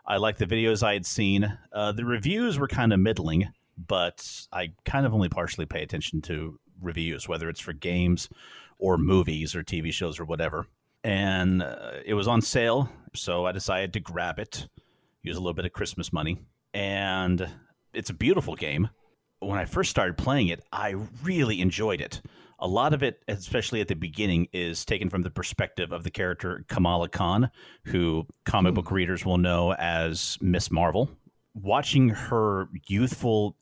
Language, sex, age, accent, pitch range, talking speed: English, male, 30-49, American, 90-105 Hz, 175 wpm